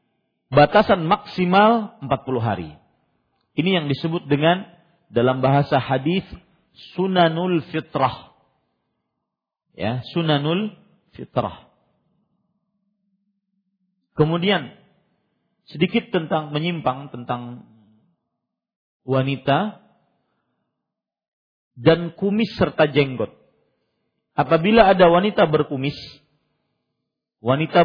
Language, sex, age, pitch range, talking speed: Malay, male, 40-59, 135-190 Hz, 65 wpm